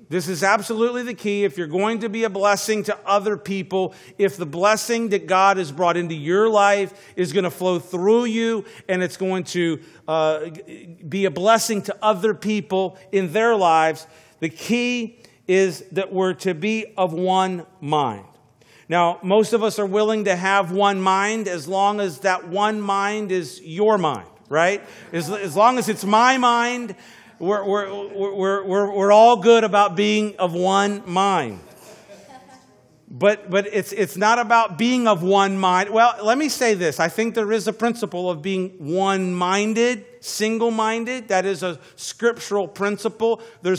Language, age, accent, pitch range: English, 50-69, American, 185-215 Hz